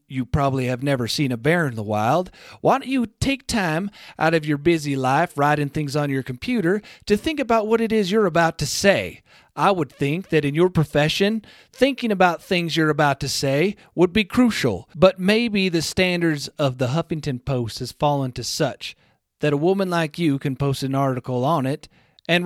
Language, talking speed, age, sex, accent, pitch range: English, 205 wpm, 40-59, male, American, 140-200 Hz